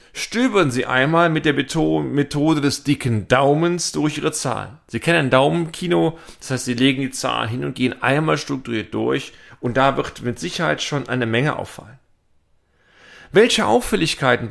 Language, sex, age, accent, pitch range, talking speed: German, male, 40-59, German, 125-160 Hz, 160 wpm